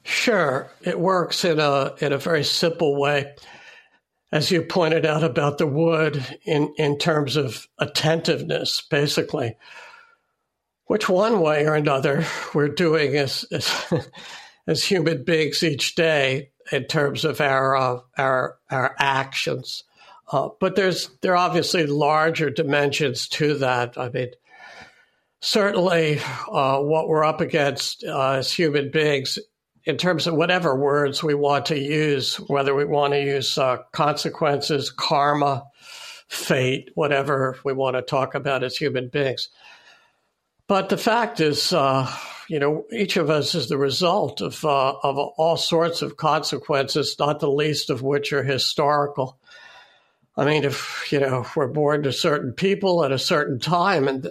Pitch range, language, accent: 140-165 Hz, English, American